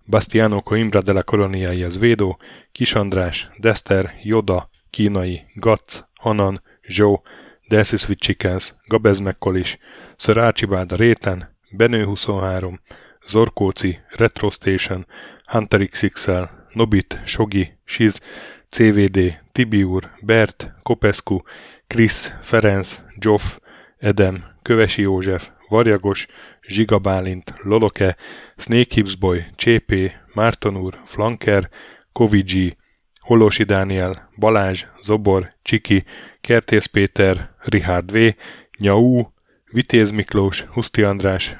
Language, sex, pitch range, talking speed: Hungarian, male, 95-110 Hz, 80 wpm